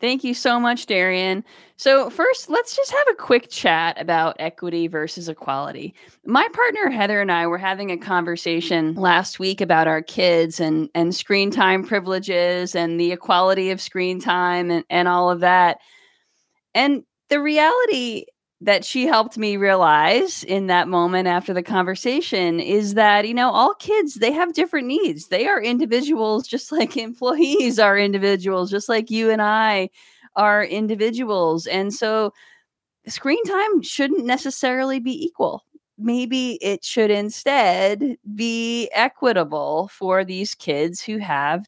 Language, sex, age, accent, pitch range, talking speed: English, female, 20-39, American, 185-265 Hz, 155 wpm